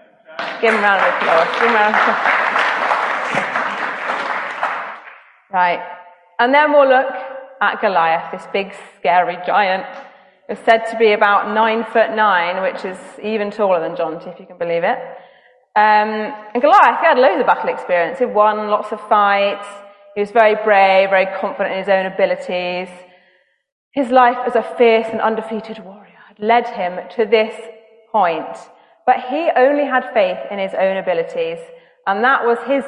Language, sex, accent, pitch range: English, female, British, 180-245 Hz